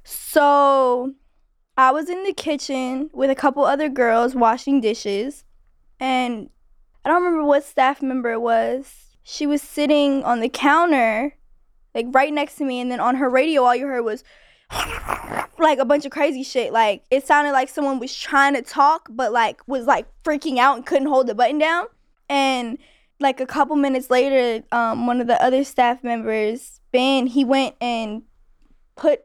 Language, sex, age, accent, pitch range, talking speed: English, female, 10-29, American, 240-285 Hz, 180 wpm